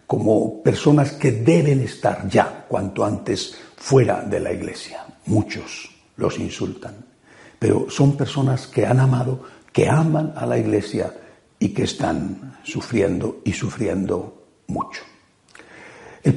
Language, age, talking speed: Spanish, 60-79, 125 wpm